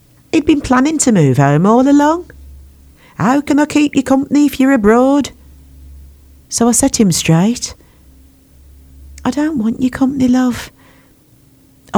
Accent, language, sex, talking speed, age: British, English, female, 140 wpm, 50-69